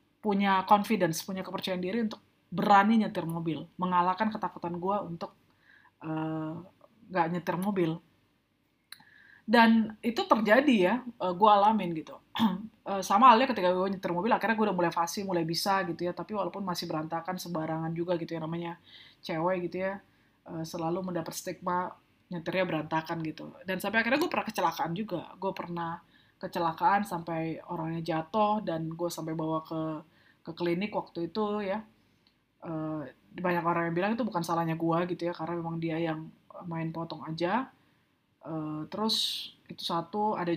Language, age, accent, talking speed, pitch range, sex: Indonesian, 20-39, native, 155 wpm, 165-200 Hz, female